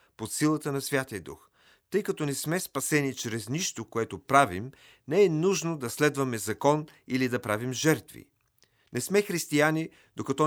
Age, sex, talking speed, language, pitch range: 40-59, male, 160 wpm, Bulgarian, 115-150 Hz